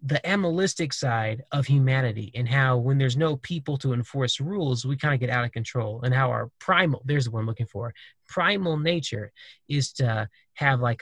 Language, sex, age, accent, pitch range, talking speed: English, male, 20-39, American, 120-155 Hz, 200 wpm